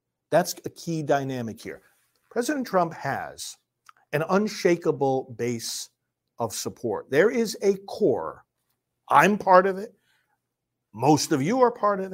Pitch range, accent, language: 125-210 Hz, American, English